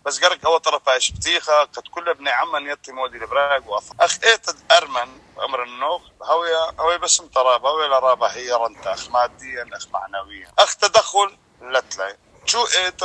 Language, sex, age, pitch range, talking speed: English, male, 30-49, 165-215 Hz, 180 wpm